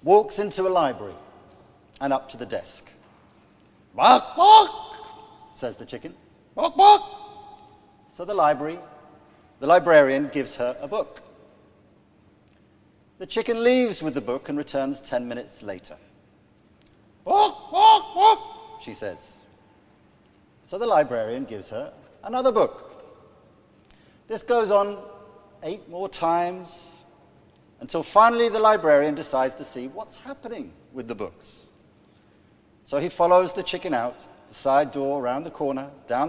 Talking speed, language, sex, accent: 125 wpm, English, male, British